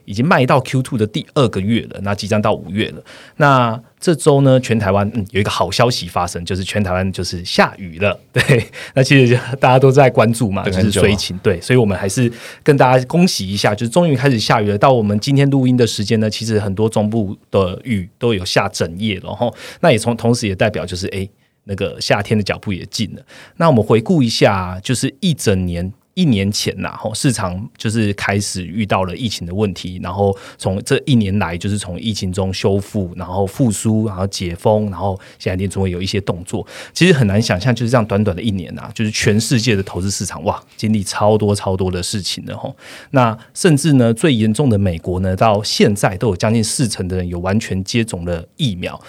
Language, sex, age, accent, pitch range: Chinese, male, 30-49, native, 100-120 Hz